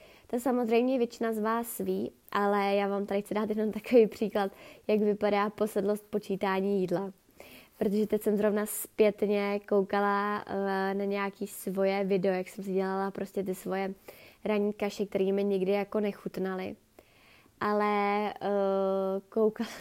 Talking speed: 135 wpm